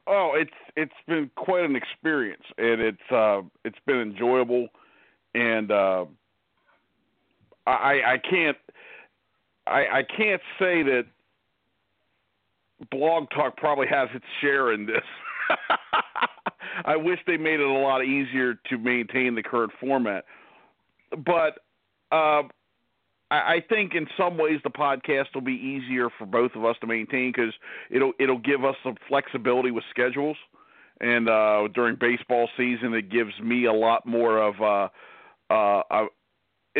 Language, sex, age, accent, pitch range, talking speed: English, male, 50-69, American, 115-140 Hz, 140 wpm